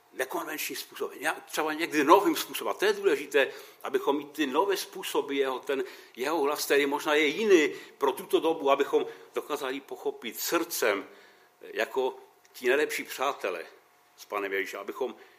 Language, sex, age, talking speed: Czech, male, 60-79, 150 wpm